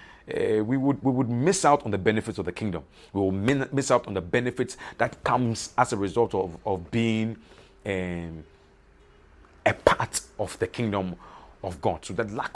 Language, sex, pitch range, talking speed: English, male, 95-125 Hz, 190 wpm